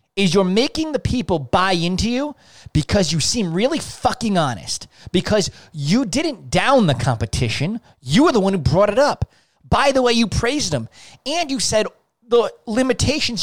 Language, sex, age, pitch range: English, male, 30-49, 135-200 Hz